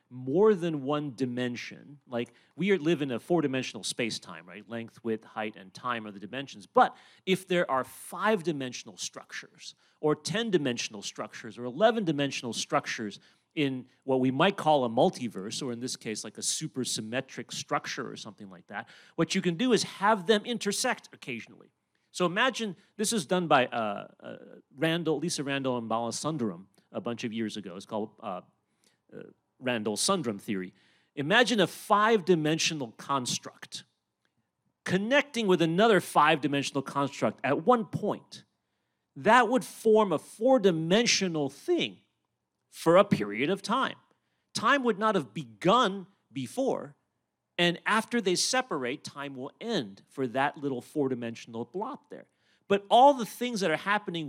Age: 40-59